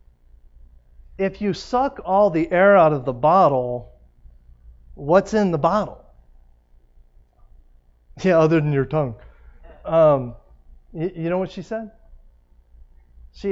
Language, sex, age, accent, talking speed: English, male, 40-59, American, 120 wpm